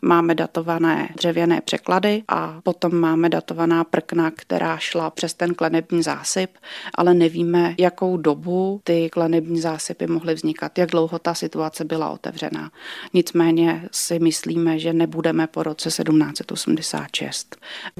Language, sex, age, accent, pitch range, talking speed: Czech, female, 30-49, native, 165-175 Hz, 125 wpm